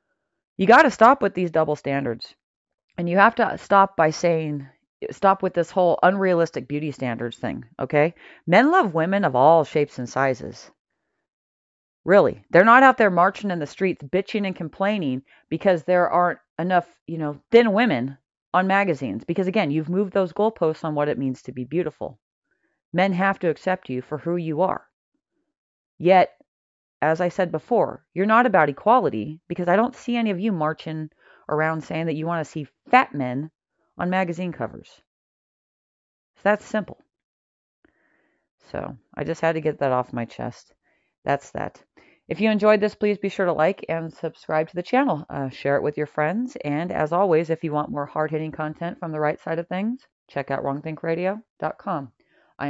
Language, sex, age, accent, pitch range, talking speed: English, female, 40-59, American, 150-195 Hz, 180 wpm